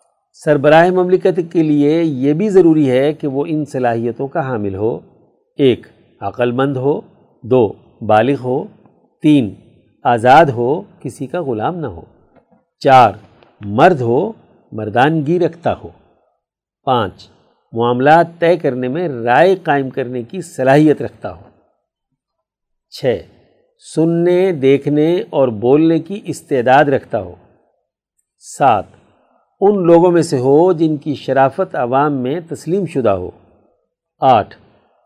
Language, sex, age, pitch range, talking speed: Urdu, male, 50-69, 130-170 Hz, 125 wpm